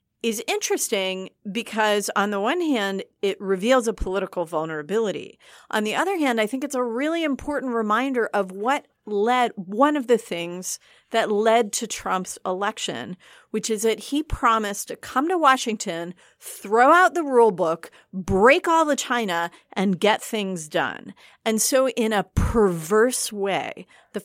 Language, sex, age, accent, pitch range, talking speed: English, female, 40-59, American, 185-255 Hz, 160 wpm